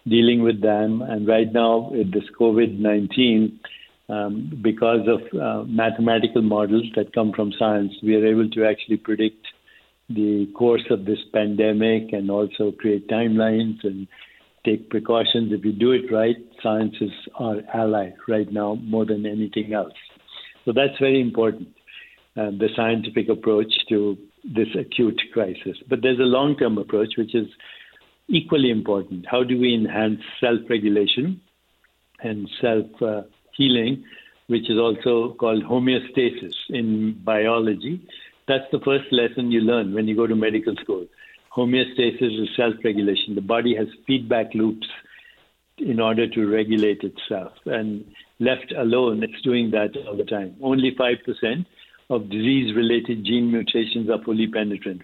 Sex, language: male, English